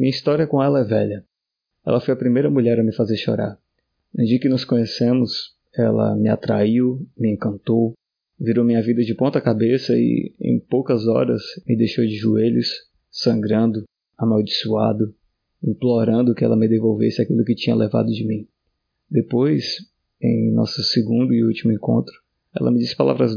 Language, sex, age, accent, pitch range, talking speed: Portuguese, male, 20-39, Brazilian, 110-125 Hz, 160 wpm